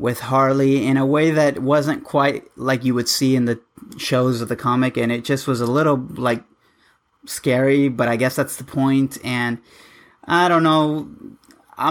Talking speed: 180 wpm